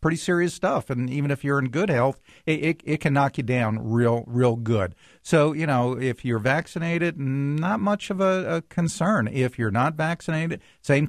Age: 50-69